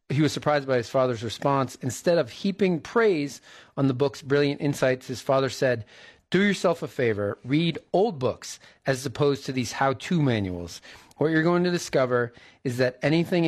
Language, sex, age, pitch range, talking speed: English, male, 40-59, 120-145 Hz, 180 wpm